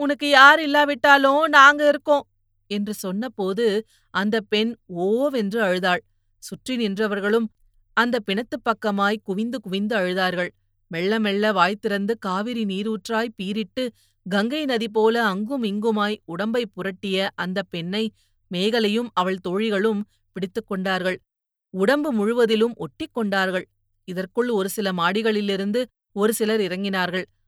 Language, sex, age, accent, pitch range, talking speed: Tamil, female, 30-49, native, 185-225 Hz, 100 wpm